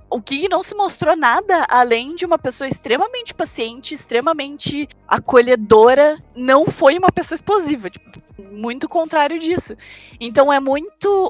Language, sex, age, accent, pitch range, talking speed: Portuguese, female, 20-39, Brazilian, 245-355 Hz, 140 wpm